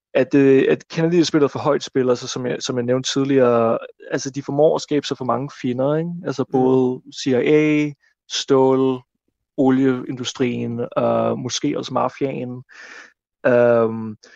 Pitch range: 120-145 Hz